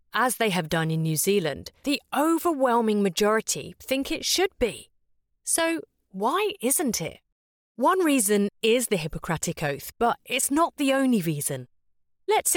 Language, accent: English, British